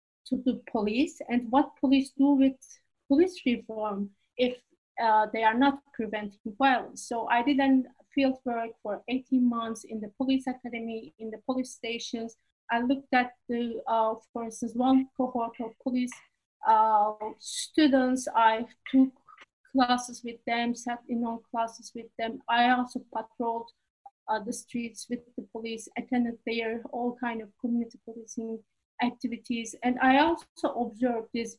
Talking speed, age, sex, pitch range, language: 150 wpm, 30-49, female, 225-260 Hz, English